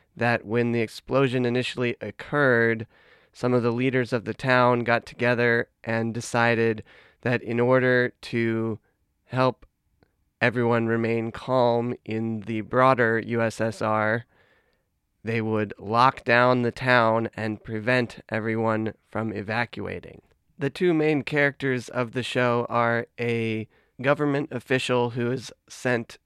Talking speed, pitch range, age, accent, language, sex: 125 wpm, 110-125 Hz, 20-39, American, English, male